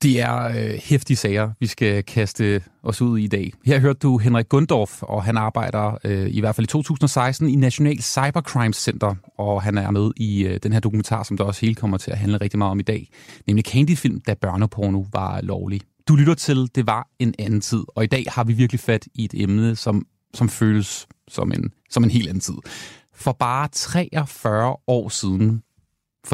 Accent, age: native, 30-49